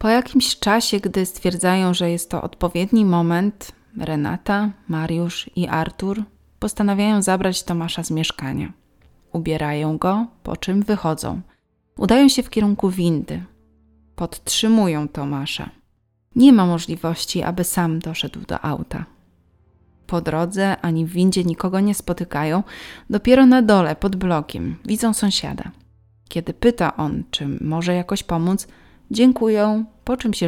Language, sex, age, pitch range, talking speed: Polish, female, 20-39, 160-205 Hz, 130 wpm